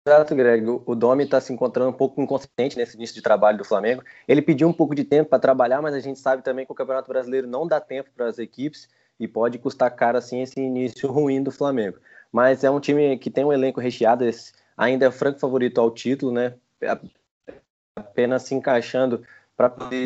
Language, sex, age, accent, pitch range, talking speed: Portuguese, male, 20-39, Brazilian, 120-145 Hz, 210 wpm